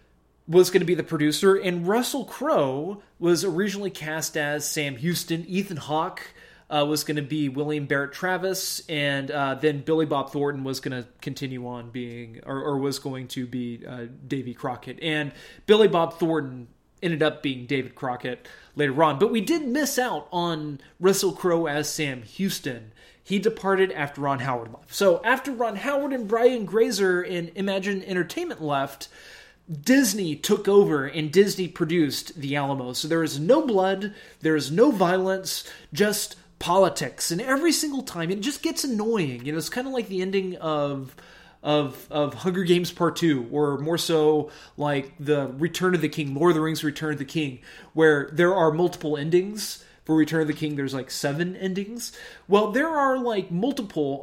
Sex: male